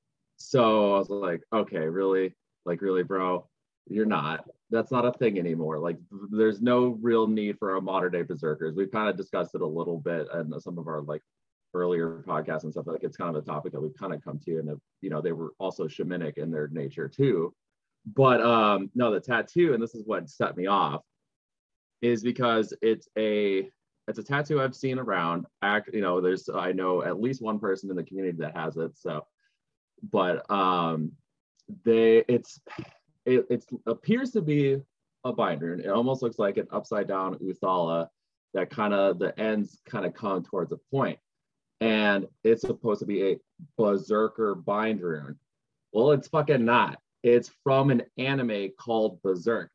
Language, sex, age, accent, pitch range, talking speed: English, male, 30-49, American, 90-120 Hz, 185 wpm